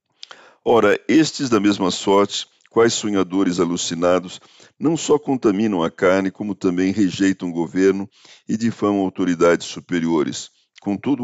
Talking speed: 125 wpm